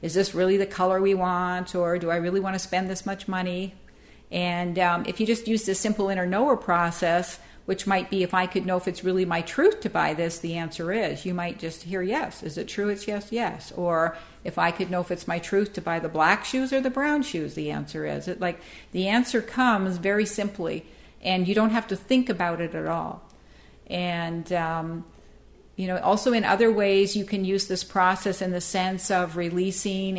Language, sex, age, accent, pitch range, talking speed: English, female, 50-69, American, 165-195 Hz, 225 wpm